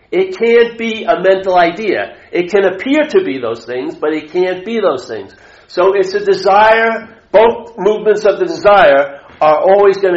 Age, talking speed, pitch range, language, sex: 50-69, 185 wpm, 145-215 Hz, English, male